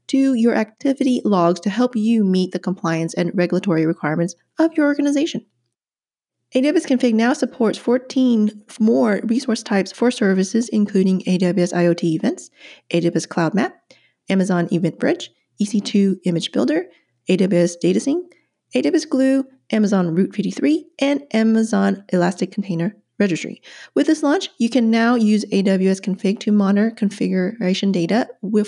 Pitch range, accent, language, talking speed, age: 185-255 Hz, American, English, 135 wpm, 30-49